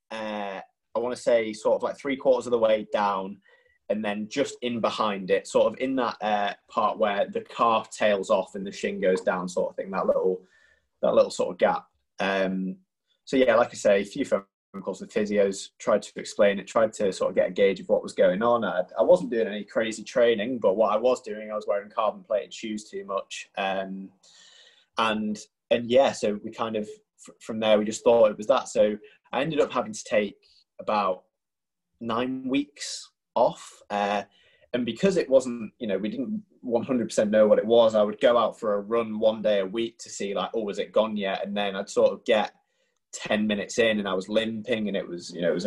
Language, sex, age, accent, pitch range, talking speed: English, male, 20-39, British, 100-125 Hz, 235 wpm